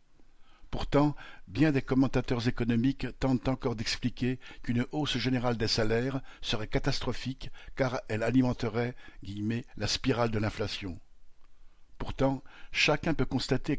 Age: 50-69